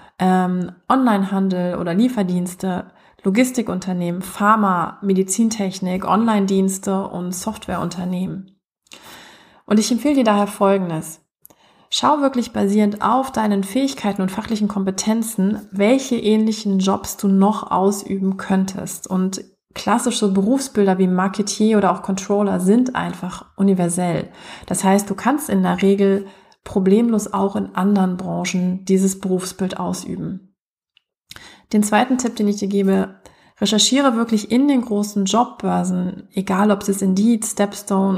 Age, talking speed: 30-49, 120 wpm